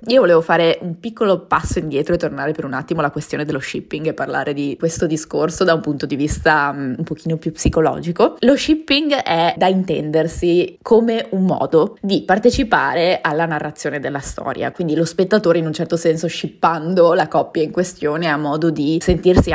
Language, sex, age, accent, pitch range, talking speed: Italian, female, 20-39, native, 150-180 Hz, 185 wpm